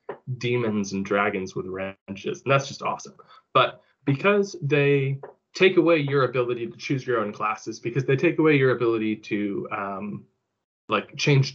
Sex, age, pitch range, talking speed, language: male, 20-39, 110-140 Hz, 160 wpm, English